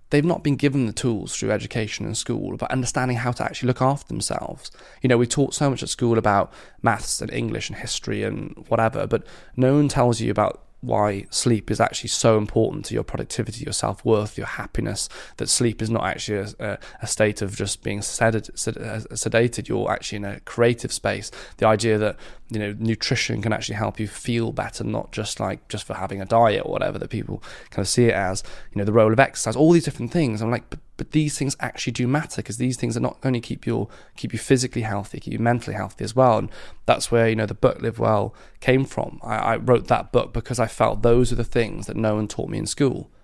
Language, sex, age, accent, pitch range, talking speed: English, male, 20-39, British, 110-130 Hz, 235 wpm